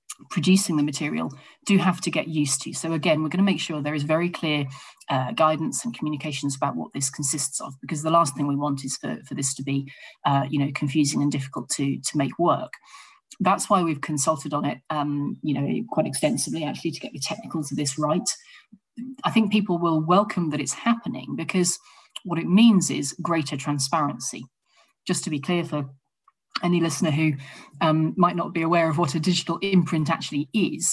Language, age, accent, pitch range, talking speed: English, 30-49, British, 145-185 Hz, 205 wpm